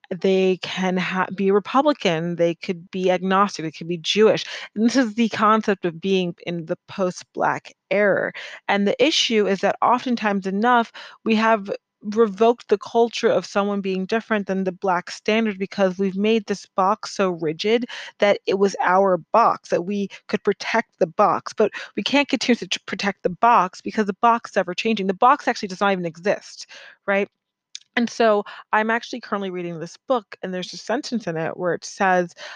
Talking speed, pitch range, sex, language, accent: 180 wpm, 185-220 Hz, female, English, American